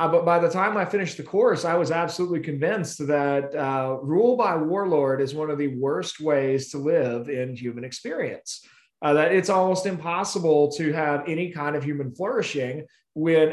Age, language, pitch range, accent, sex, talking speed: 30-49, English, 145-175 Hz, American, male, 185 wpm